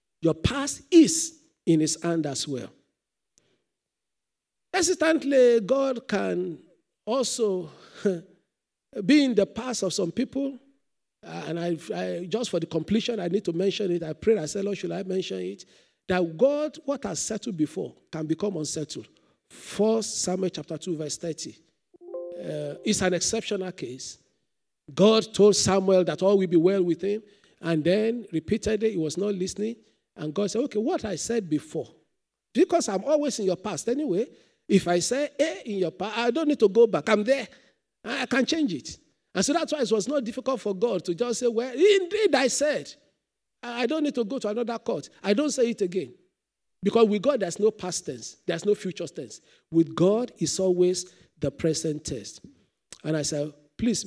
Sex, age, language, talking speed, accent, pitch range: male, 50-69, English, 180 wpm, Nigerian, 175-240 Hz